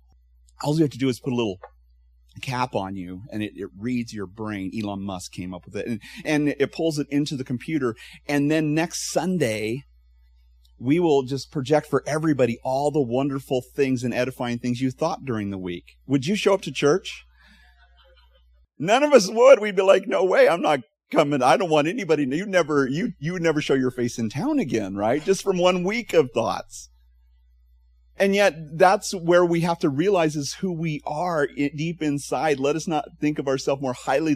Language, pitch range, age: English, 105-155 Hz, 40-59